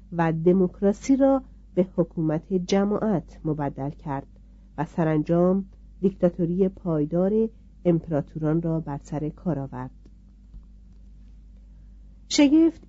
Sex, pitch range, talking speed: female, 160-205 Hz, 90 wpm